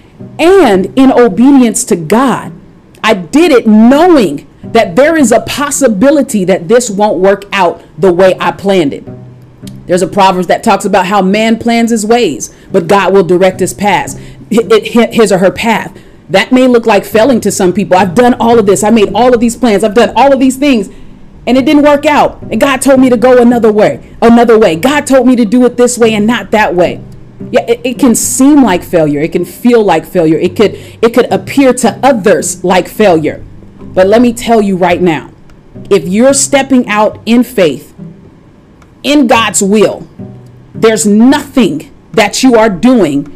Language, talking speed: English, 195 wpm